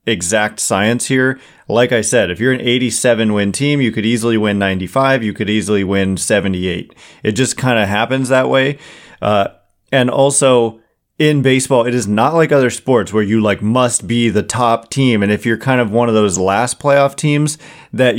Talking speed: 200 wpm